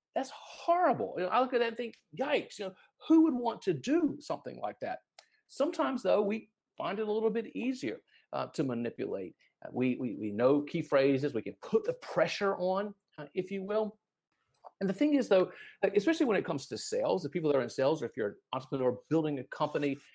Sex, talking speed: male, 225 wpm